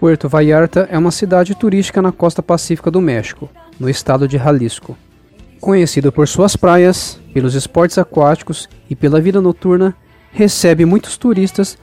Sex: male